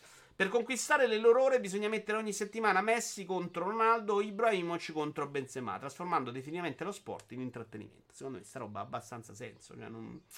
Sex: male